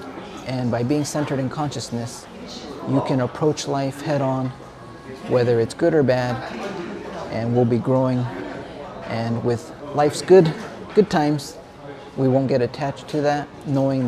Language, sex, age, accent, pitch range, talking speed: English, male, 30-49, American, 130-150 Hz, 140 wpm